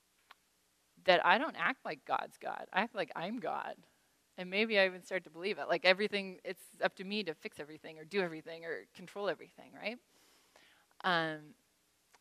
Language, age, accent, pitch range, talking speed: English, 20-39, American, 155-195 Hz, 180 wpm